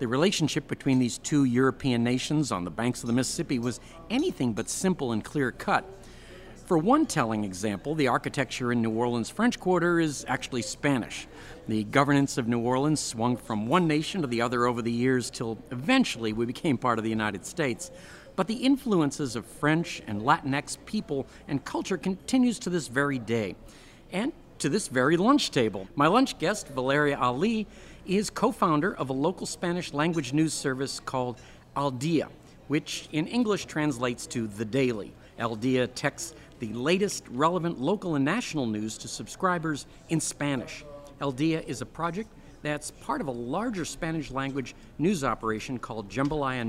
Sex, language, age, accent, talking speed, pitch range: male, English, 50-69, American, 170 wpm, 120-165 Hz